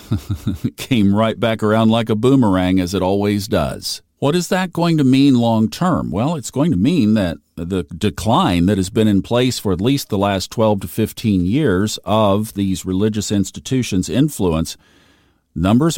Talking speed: 180 wpm